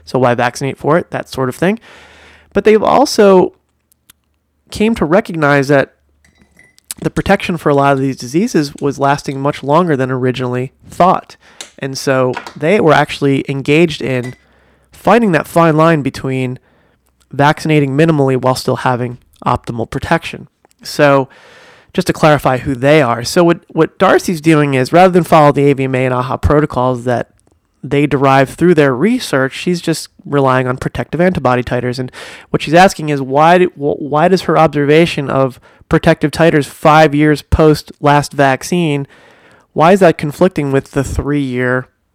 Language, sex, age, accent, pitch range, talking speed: English, male, 30-49, American, 130-160 Hz, 155 wpm